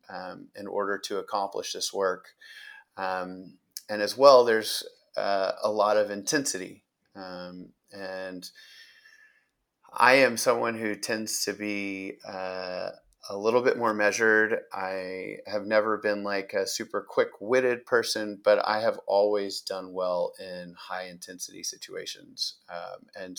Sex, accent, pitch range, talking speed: male, American, 95-115 Hz, 135 wpm